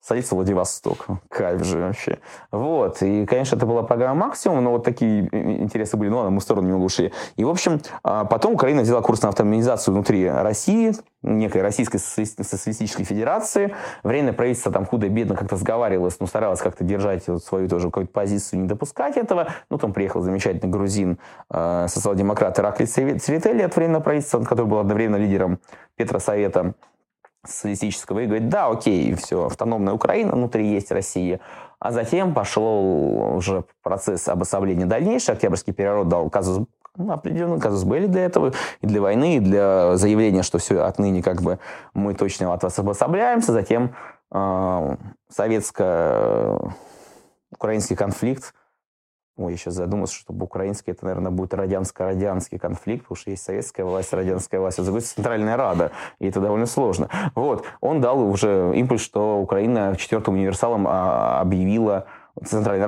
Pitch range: 95-115 Hz